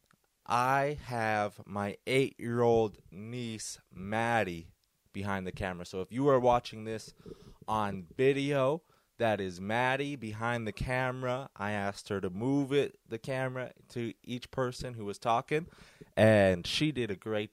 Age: 20-39